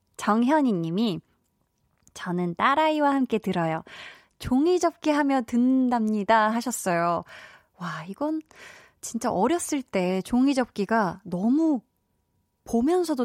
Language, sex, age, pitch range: Korean, female, 20-39, 185-250 Hz